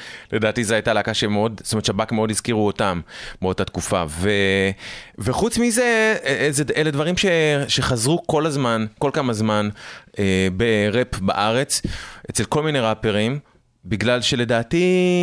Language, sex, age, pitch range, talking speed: Hebrew, male, 30-49, 100-130 Hz, 130 wpm